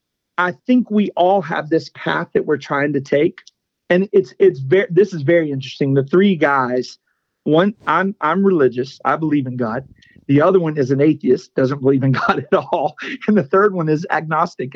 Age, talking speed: 40-59, 200 wpm